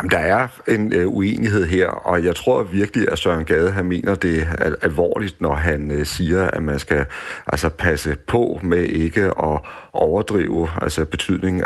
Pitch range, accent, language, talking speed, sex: 80-95 Hz, native, Danish, 160 wpm, male